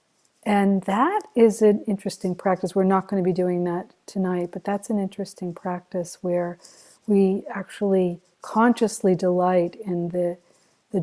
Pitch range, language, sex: 175-200 Hz, English, female